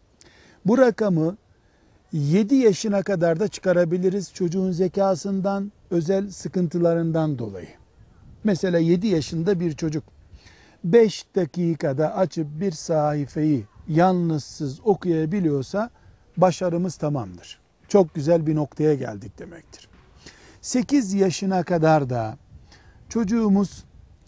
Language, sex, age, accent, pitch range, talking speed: Turkish, male, 60-79, native, 155-195 Hz, 90 wpm